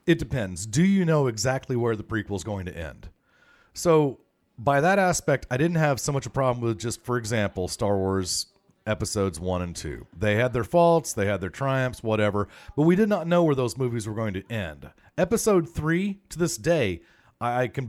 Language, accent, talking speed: English, American, 210 wpm